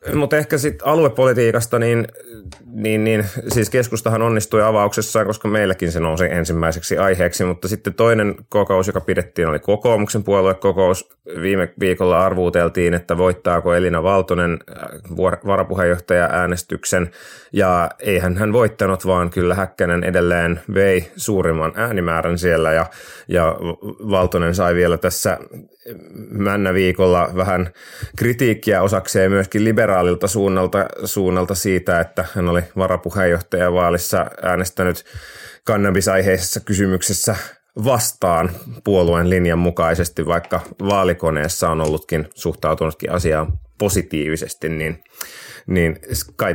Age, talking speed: 30-49, 110 wpm